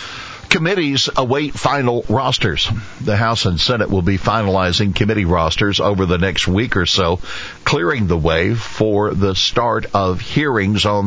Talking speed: 150 wpm